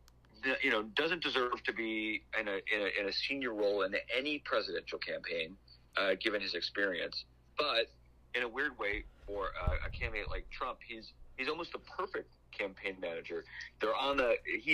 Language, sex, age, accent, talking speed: English, male, 40-59, American, 180 wpm